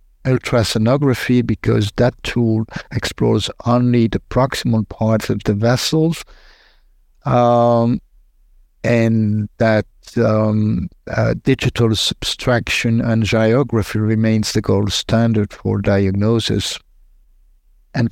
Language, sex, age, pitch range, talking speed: English, male, 60-79, 110-120 Hz, 95 wpm